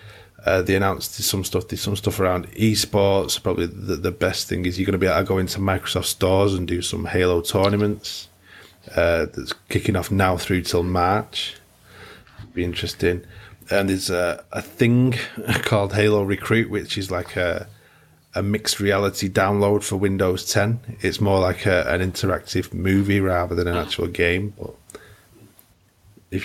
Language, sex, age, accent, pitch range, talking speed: English, male, 30-49, British, 90-105 Hz, 170 wpm